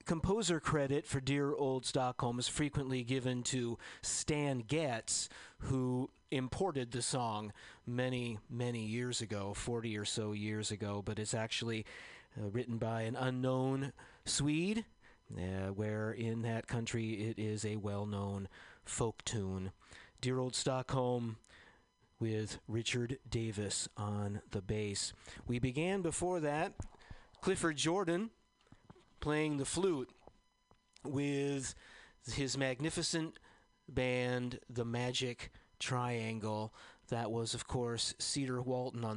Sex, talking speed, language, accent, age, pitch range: male, 120 wpm, English, American, 40-59, 110-135 Hz